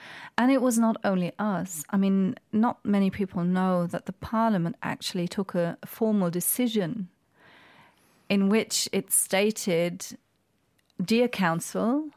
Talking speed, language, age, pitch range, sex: 130 wpm, English, 40-59, 180-225 Hz, female